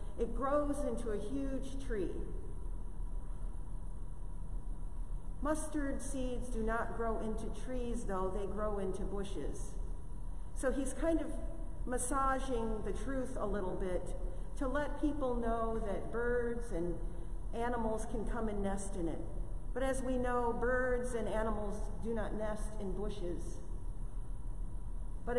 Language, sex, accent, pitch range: English, female, American, 195-245 Hz